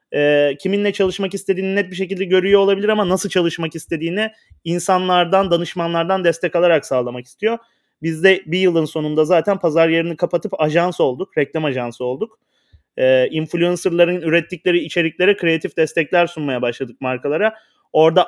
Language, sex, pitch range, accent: Turkish, male, 160-195 Hz, native